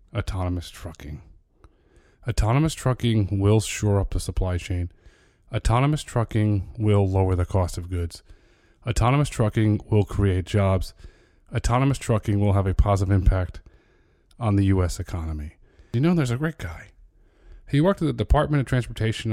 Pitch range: 95-110 Hz